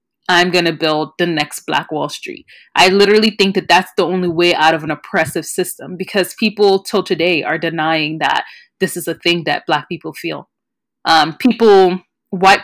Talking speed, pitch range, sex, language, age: 190 wpm, 165-195 Hz, female, English, 20-39